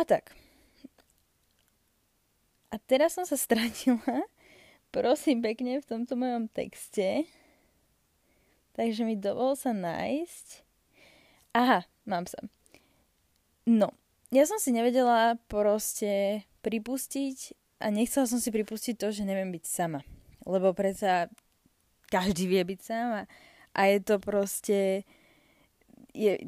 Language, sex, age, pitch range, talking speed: Slovak, female, 20-39, 185-235 Hz, 110 wpm